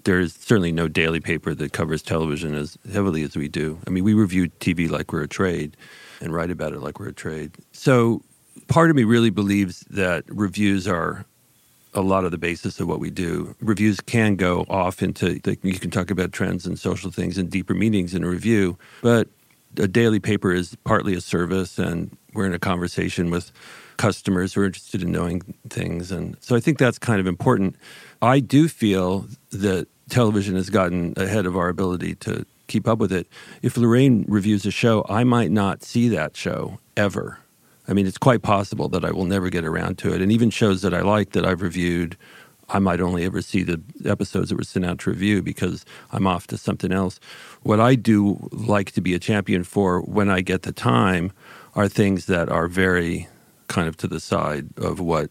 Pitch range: 90-105 Hz